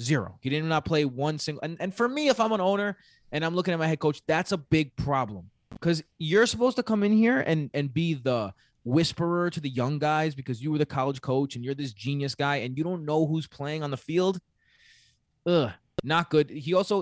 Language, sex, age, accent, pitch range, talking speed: English, male, 20-39, American, 125-160 Hz, 235 wpm